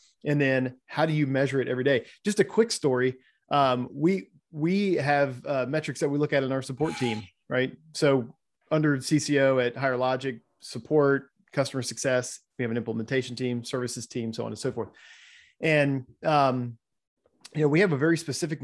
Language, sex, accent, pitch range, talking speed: English, male, American, 130-155 Hz, 185 wpm